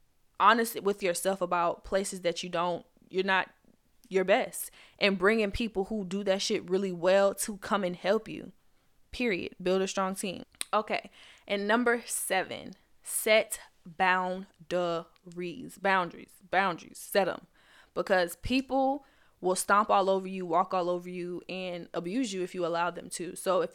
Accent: American